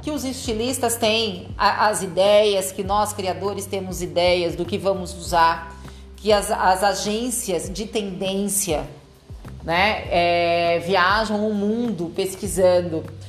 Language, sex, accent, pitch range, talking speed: Portuguese, female, Brazilian, 175-220 Hz, 120 wpm